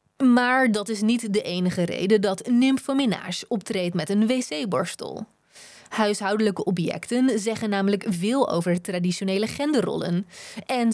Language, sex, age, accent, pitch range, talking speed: Dutch, female, 20-39, Dutch, 195-260 Hz, 120 wpm